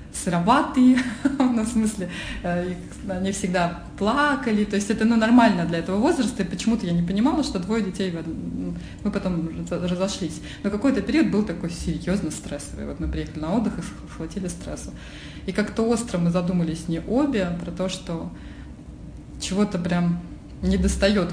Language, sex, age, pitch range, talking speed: Russian, female, 20-39, 165-225 Hz, 150 wpm